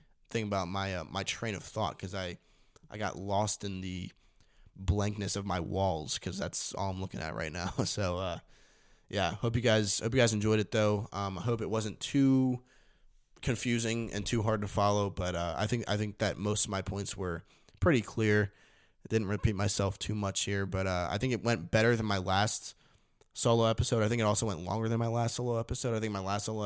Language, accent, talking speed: English, American, 225 wpm